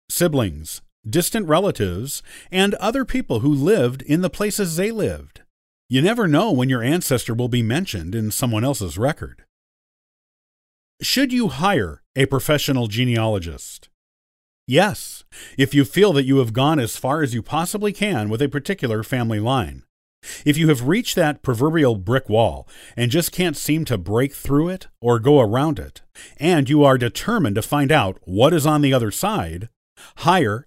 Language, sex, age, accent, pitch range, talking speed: English, male, 40-59, American, 115-160 Hz, 165 wpm